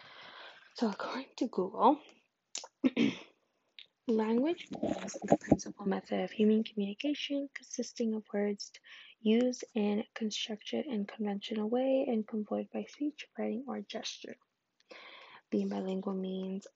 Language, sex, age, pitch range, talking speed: English, female, 10-29, 205-255 Hz, 115 wpm